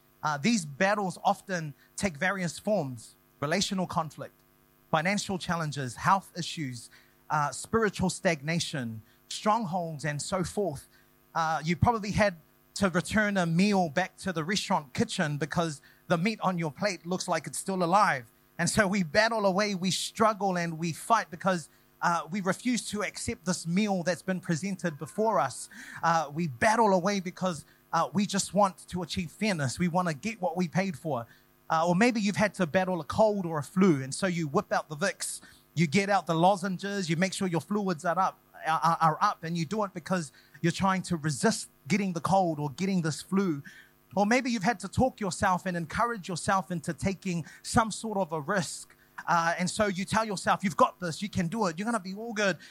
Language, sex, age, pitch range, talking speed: English, male, 30-49, 165-205 Hz, 195 wpm